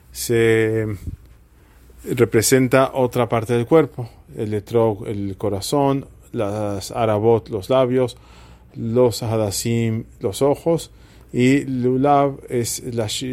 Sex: male